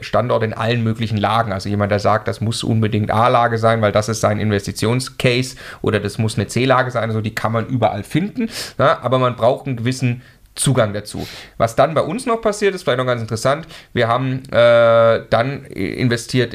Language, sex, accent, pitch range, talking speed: German, male, German, 110-135 Hz, 195 wpm